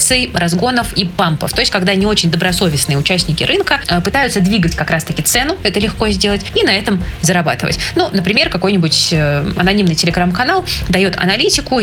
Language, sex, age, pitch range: Russian, female, 20-39, 175-210 Hz